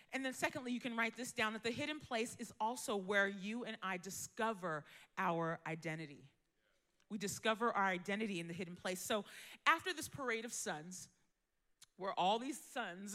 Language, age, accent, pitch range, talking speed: English, 40-59, American, 185-255 Hz, 180 wpm